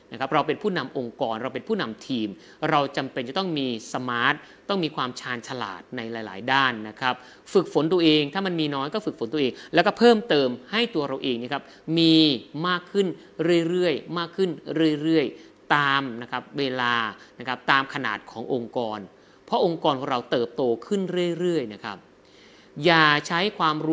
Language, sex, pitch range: Thai, male, 125-165 Hz